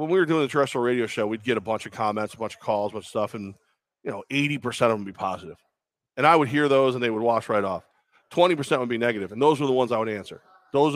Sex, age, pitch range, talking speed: male, 40-59, 115-145 Hz, 300 wpm